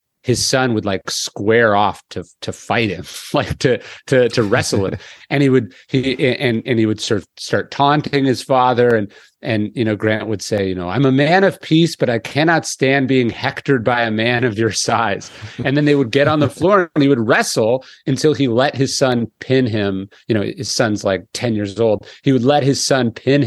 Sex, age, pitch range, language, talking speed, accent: male, 40-59, 110-140 Hz, English, 230 wpm, American